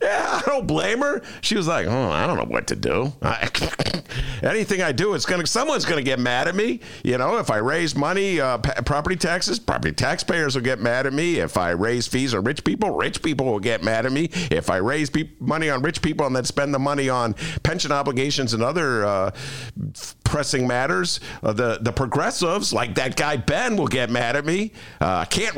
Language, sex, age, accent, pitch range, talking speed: English, male, 50-69, American, 125-175 Hz, 225 wpm